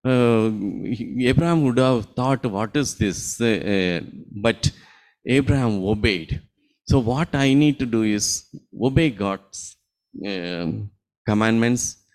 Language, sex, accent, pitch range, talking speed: English, male, Indian, 100-135 Hz, 120 wpm